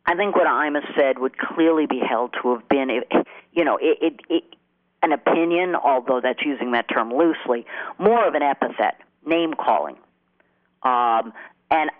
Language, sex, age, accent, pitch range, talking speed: English, female, 50-69, American, 125-160 Hz, 140 wpm